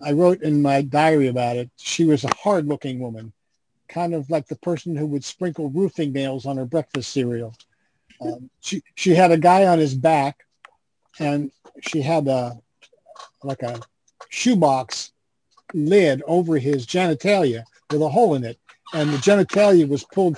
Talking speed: 165 wpm